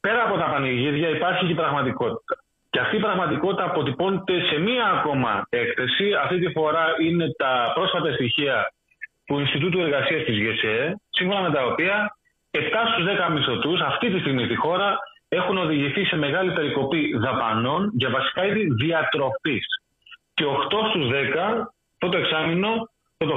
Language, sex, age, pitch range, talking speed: Greek, male, 30-49, 145-205 Hz, 150 wpm